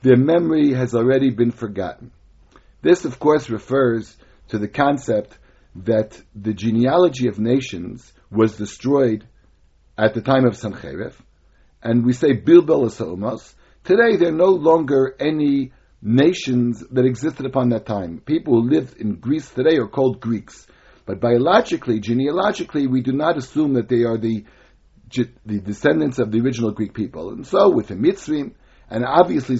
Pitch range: 115-150 Hz